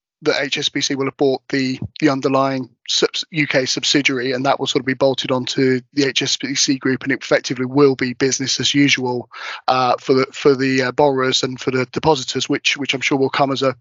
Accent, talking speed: British, 205 wpm